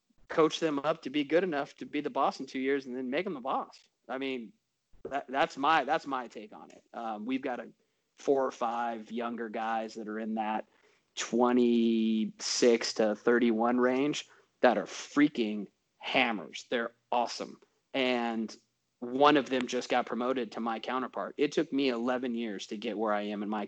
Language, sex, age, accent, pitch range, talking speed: English, male, 30-49, American, 110-130 Hz, 190 wpm